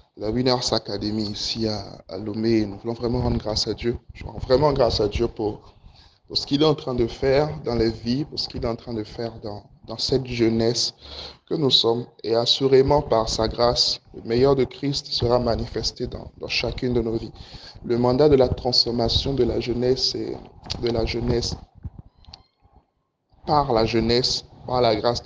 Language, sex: French, male